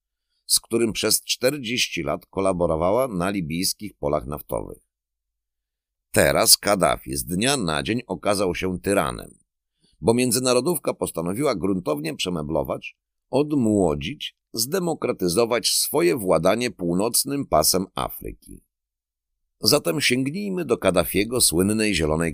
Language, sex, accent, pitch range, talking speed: Polish, male, native, 70-110 Hz, 100 wpm